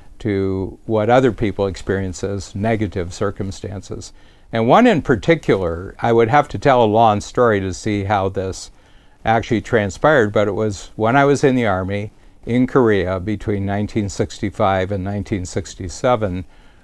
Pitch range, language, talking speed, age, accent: 95-115 Hz, English, 145 wpm, 50-69, American